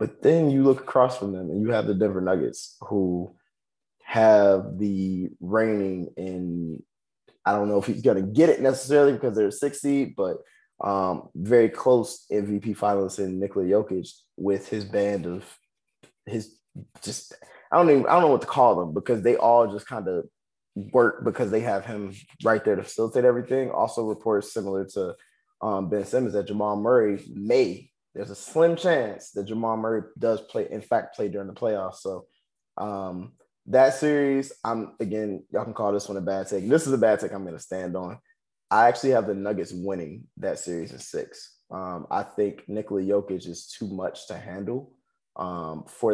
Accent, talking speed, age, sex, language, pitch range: American, 190 wpm, 20-39, male, English, 95-120 Hz